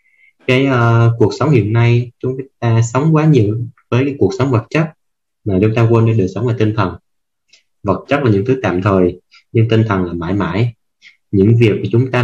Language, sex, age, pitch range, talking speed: Vietnamese, male, 20-39, 95-120 Hz, 215 wpm